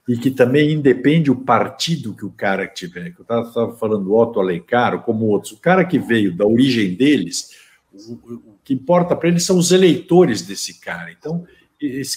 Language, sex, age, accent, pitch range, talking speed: Portuguese, male, 60-79, Brazilian, 110-170 Hz, 185 wpm